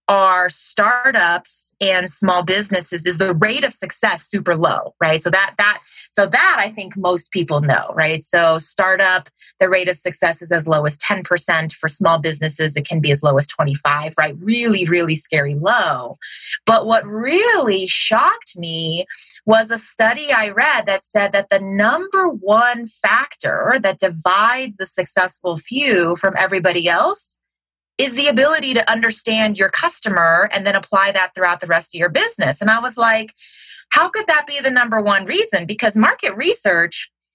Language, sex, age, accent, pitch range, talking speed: English, female, 20-39, American, 175-225 Hz, 170 wpm